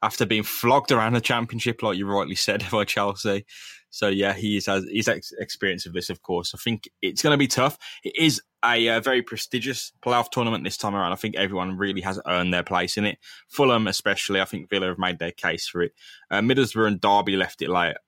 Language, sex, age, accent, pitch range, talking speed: English, male, 10-29, British, 95-115 Hz, 220 wpm